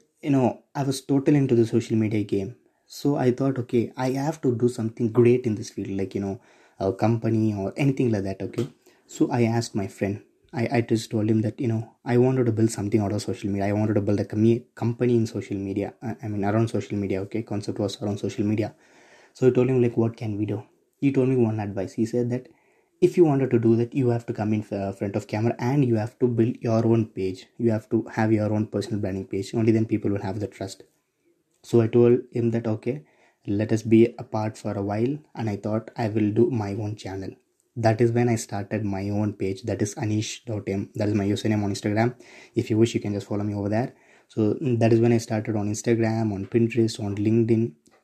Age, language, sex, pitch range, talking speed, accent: 20-39, English, male, 105-120 Hz, 240 wpm, Indian